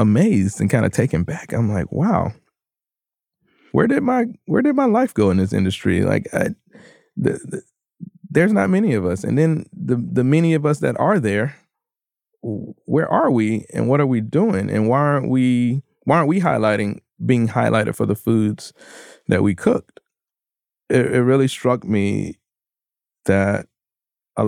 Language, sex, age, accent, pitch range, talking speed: English, male, 20-39, American, 95-130 Hz, 170 wpm